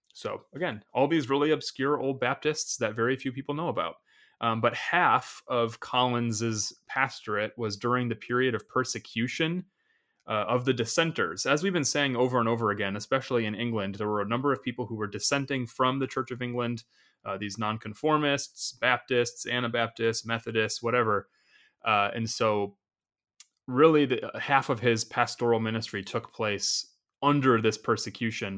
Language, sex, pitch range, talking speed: English, male, 105-130 Hz, 165 wpm